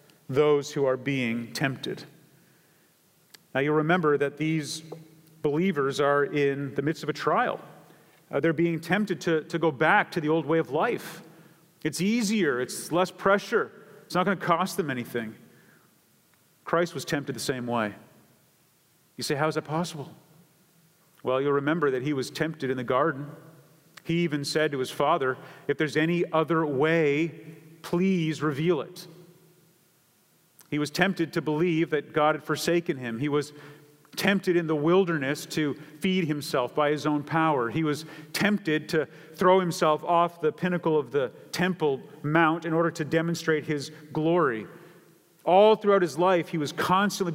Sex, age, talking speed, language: male, 40-59, 165 wpm, English